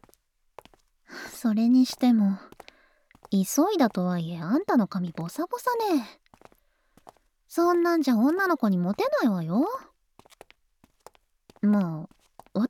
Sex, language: male, Japanese